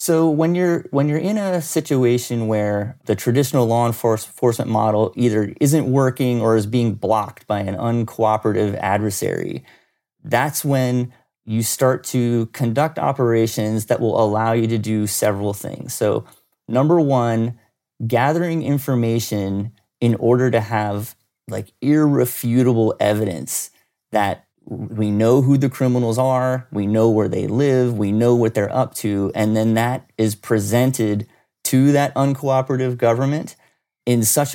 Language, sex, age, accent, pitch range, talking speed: English, male, 30-49, American, 110-130 Hz, 140 wpm